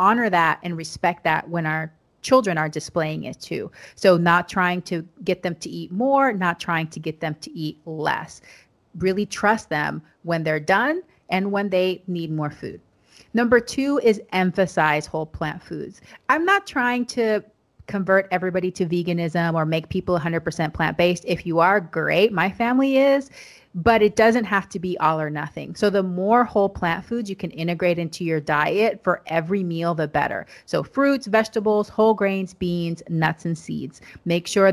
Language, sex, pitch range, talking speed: English, female, 165-210 Hz, 185 wpm